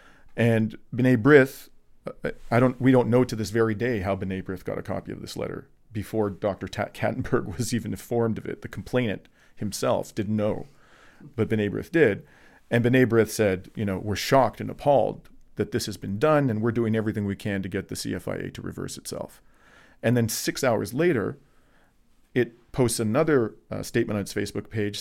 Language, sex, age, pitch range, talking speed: French, male, 40-59, 100-120 Hz, 185 wpm